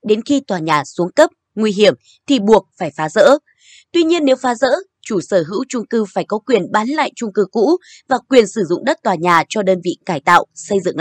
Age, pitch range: 20-39, 185-265 Hz